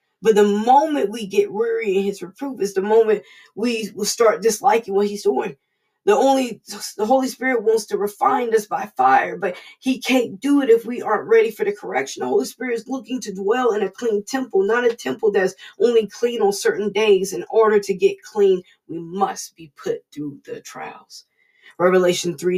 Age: 20-39